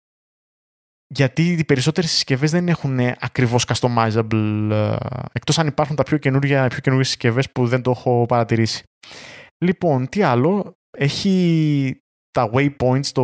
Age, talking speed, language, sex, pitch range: 20-39, 130 wpm, Greek, male, 120-140 Hz